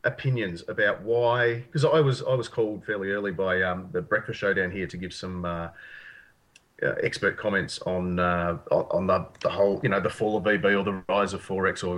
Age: 30-49